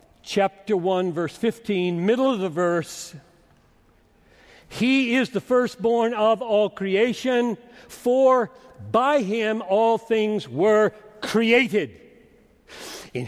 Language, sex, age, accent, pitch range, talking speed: English, male, 60-79, American, 165-225 Hz, 105 wpm